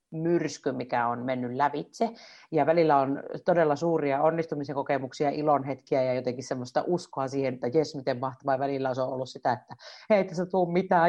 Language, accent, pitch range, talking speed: Finnish, native, 135-170 Hz, 180 wpm